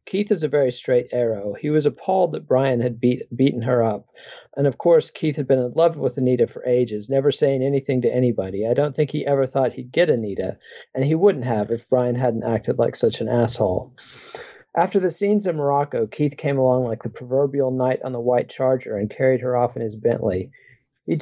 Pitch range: 120-150 Hz